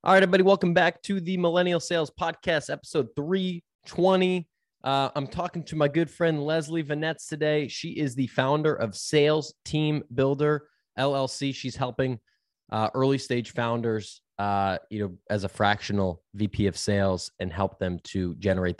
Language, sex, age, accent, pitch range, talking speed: English, male, 20-39, American, 105-140 Hz, 165 wpm